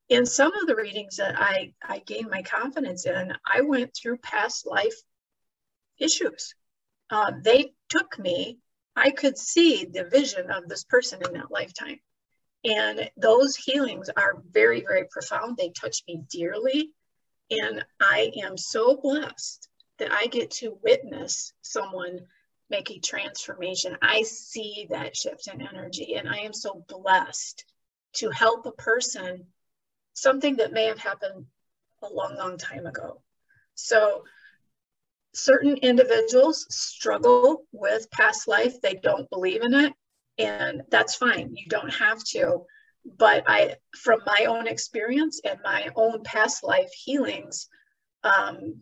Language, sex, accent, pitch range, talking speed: English, female, American, 220-305 Hz, 140 wpm